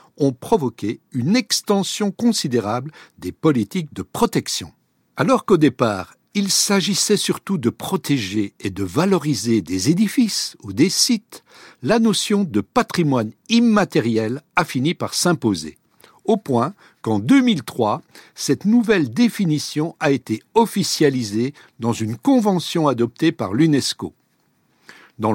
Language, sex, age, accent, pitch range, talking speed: French, male, 60-79, French, 130-205 Hz, 120 wpm